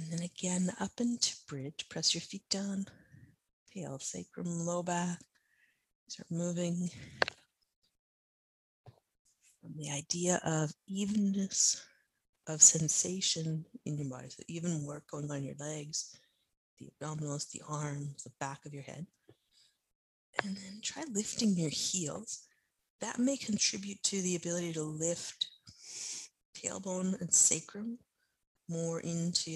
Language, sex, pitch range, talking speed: English, female, 150-190 Hz, 120 wpm